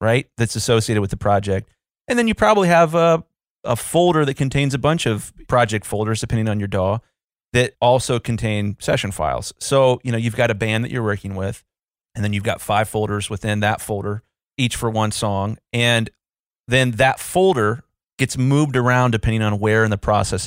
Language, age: English, 30-49